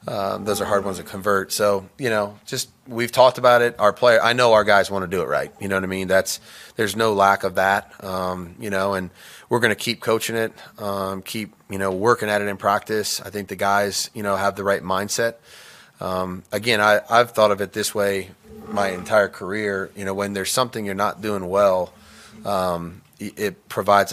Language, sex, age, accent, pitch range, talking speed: English, male, 30-49, American, 95-110 Hz, 225 wpm